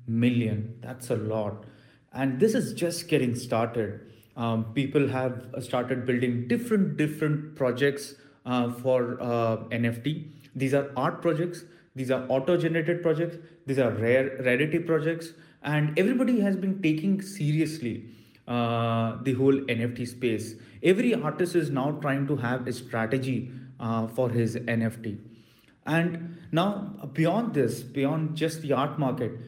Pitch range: 120-150 Hz